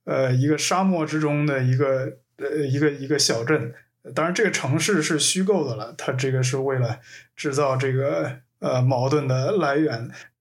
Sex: male